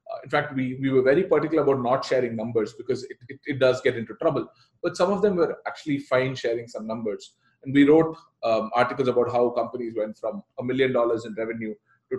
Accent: Indian